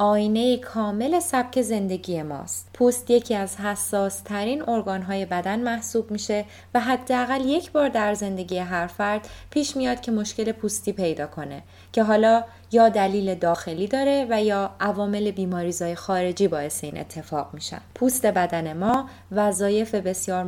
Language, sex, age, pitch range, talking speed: Persian, female, 20-39, 185-235 Hz, 145 wpm